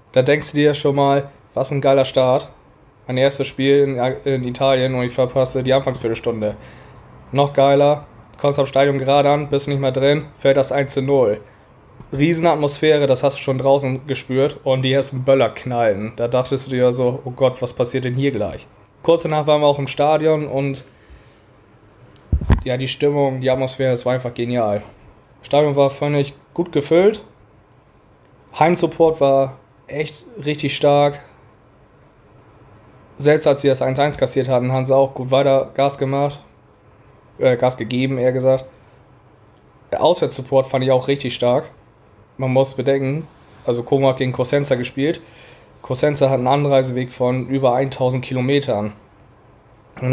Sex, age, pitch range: male, 20-39, 125-140 Hz